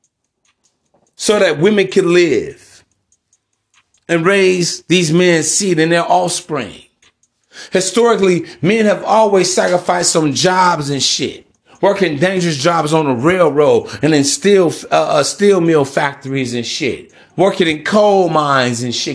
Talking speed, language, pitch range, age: 135 wpm, English, 145-185 Hz, 30-49